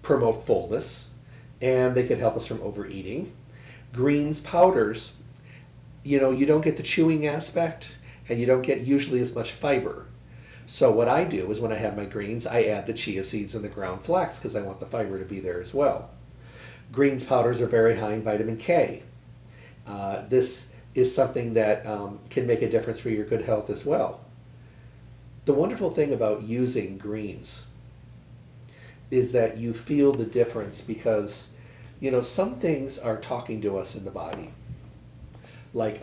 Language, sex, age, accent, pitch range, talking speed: English, male, 40-59, American, 105-130 Hz, 175 wpm